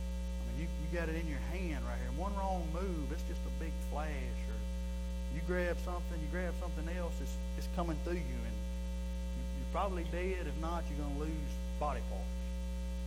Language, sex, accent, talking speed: English, male, American, 195 wpm